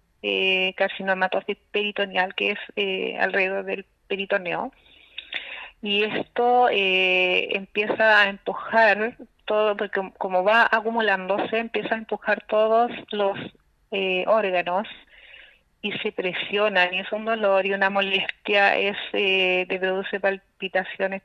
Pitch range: 185-205 Hz